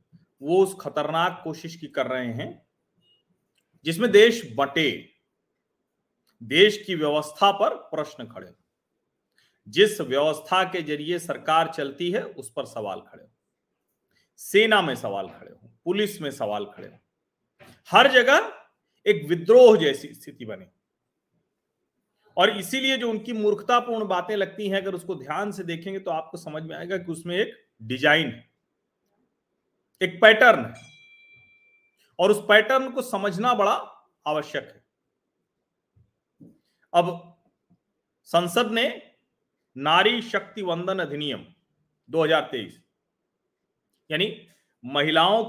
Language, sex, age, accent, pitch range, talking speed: Hindi, male, 40-59, native, 160-220 Hz, 115 wpm